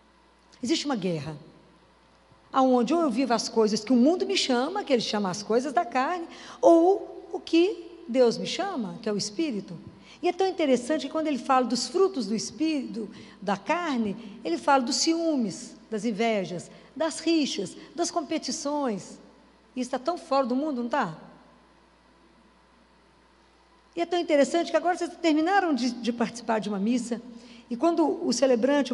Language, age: Portuguese, 60-79